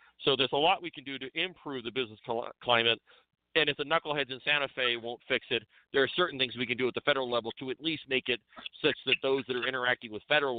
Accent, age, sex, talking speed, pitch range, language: American, 50-69, male, 260 wpm, 115-135 Hz, English